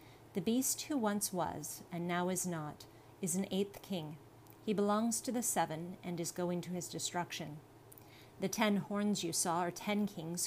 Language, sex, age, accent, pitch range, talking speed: English, female, 40-59, American, 165-200 Hz, 185 wpm